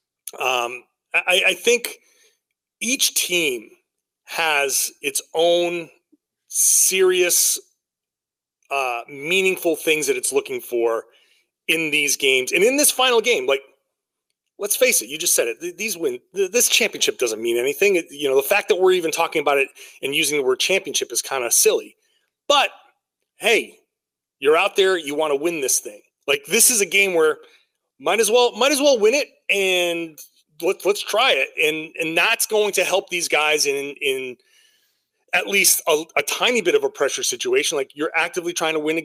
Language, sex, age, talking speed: English, male, 30-49, 180 wpm